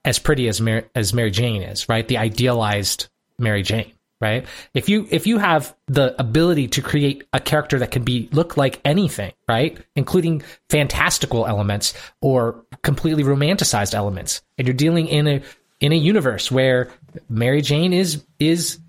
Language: English